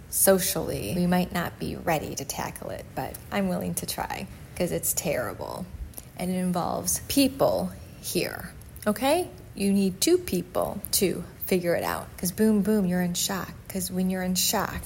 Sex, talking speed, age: female, 170 wpm, 30-49